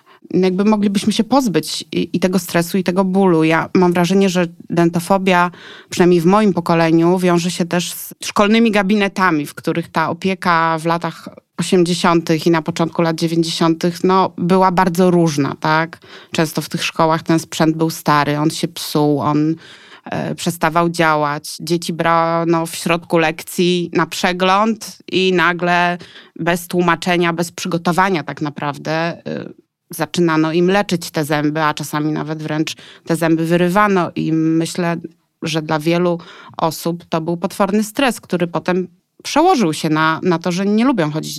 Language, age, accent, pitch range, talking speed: Polish, 30-49, native, 165-205 Hz, 155 wpm